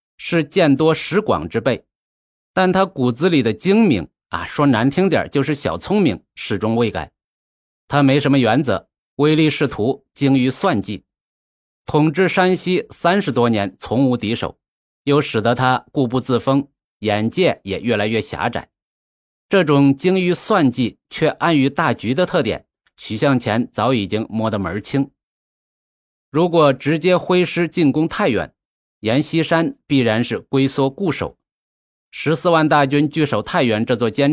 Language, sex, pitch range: Chinese, male, 115-155 Hz